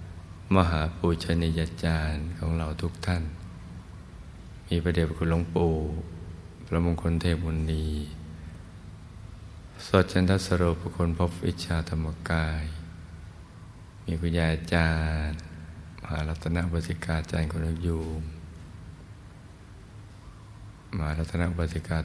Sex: male